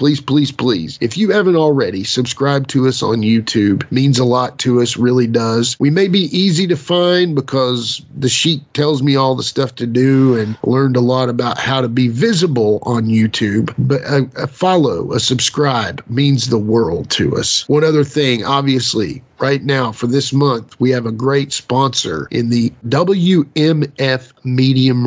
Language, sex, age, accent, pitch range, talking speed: English, male, 40-59, American, 120-140 Hz, 180 wpm